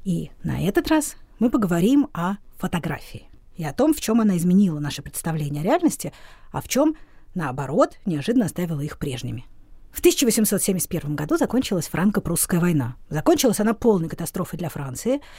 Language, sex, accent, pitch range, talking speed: Russian, female, native, 160-230 Hz, 150 wpm